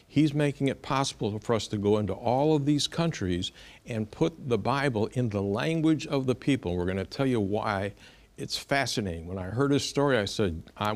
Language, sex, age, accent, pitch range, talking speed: English, male, 60-79, American, 100-135 Hz, 215 wpm